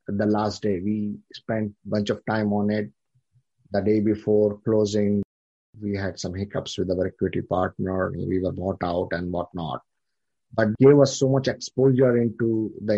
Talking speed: 170 wpm